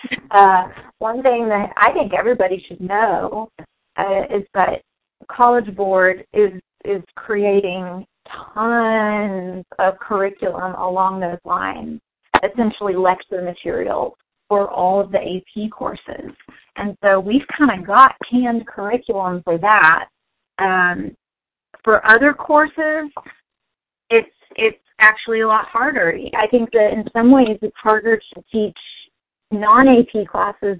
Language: English